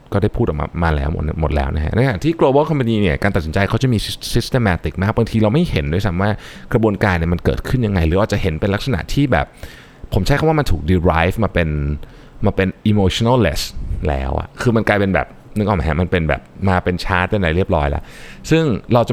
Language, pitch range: Thai, 80-115 Hz